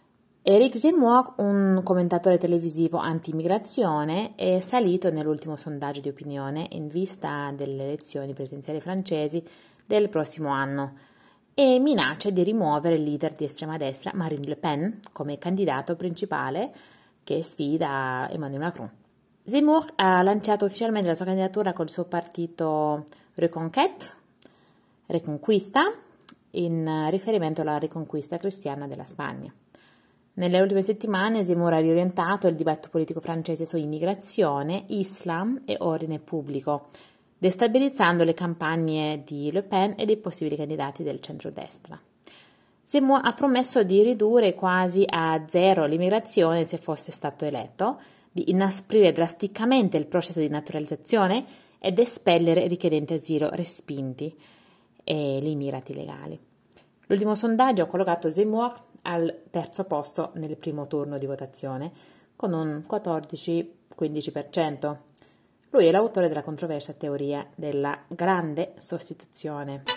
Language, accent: Italian, native